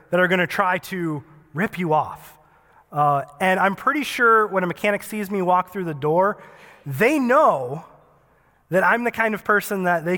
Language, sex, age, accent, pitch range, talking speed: English, male, 20-39, American, 160-215 Hz, 195 wpm